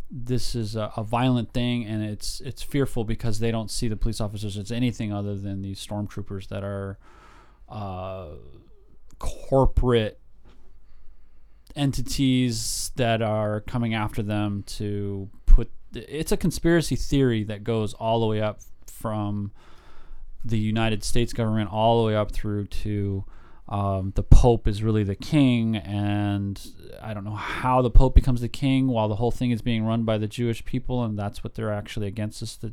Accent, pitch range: American, 105-120 Hz